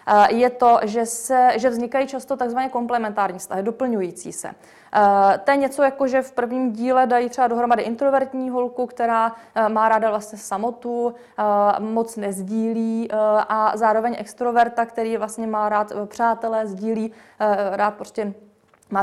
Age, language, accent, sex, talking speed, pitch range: 20-39, Czech, native, female, 140 wpm, 210-250 Hz